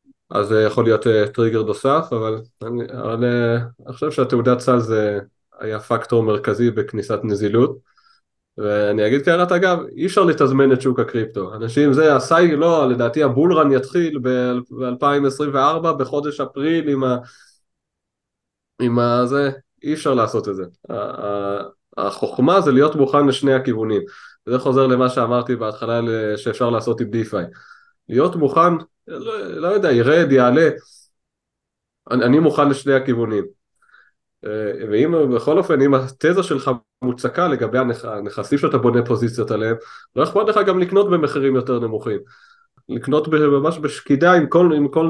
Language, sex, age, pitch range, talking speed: Hebrew, male, 20-39, 120-155 Hz, 120 wpm